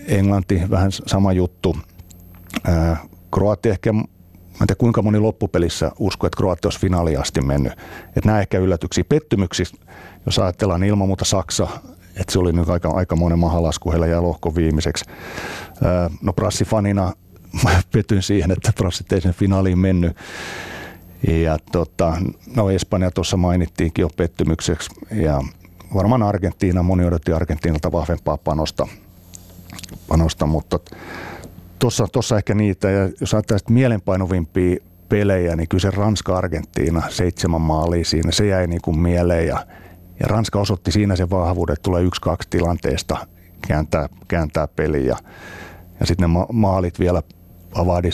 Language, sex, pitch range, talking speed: Finnish, male, 85-100 Hz, 135 wpm